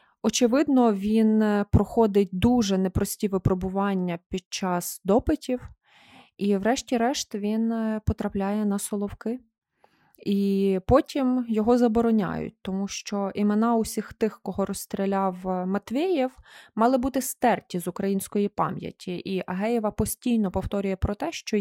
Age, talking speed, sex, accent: 20-39, 110 wpm, female, native